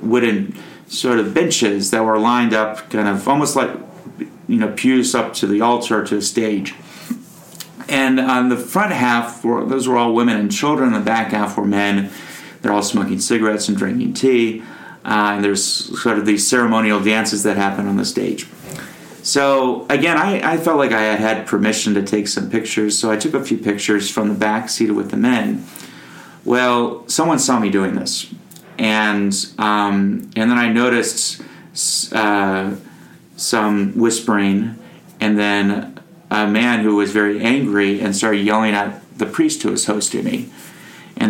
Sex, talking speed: male, 175 wpm